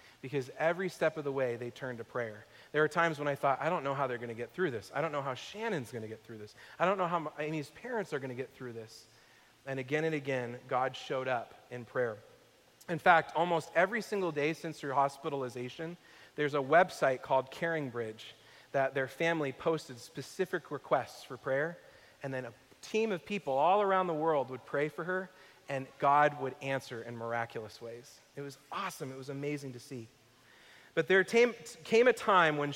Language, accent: English, American